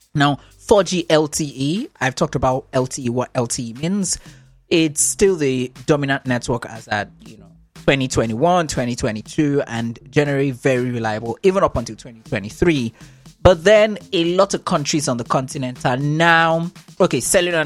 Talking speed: 145 wpm